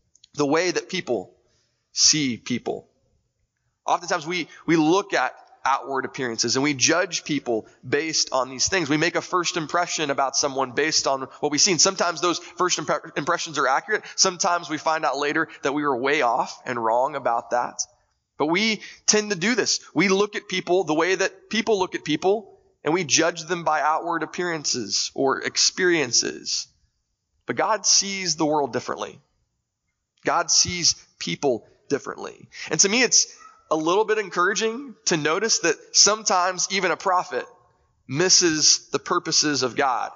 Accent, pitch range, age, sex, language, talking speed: American, 150-190 Hz, 20-39, male, English, 165 wpm